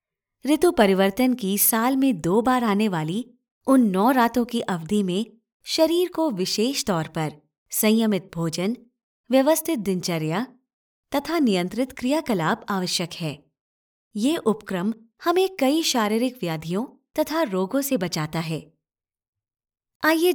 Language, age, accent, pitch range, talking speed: Hindi, 20-39, native, 175-260 Hz, 120 wpm